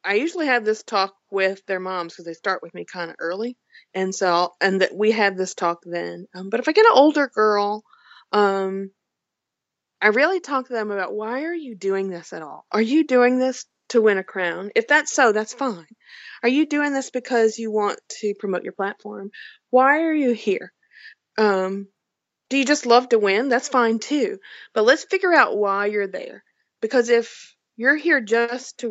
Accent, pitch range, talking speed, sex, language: American, 195-260 Hz, 205 wpm, female, English